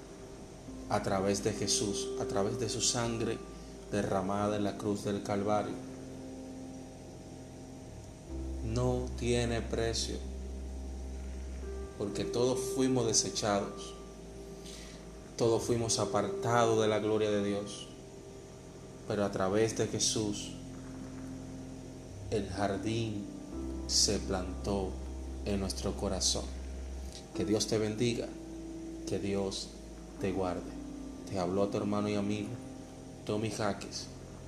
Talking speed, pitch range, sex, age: 105 wpm, 75-110 Hz, male, 30-49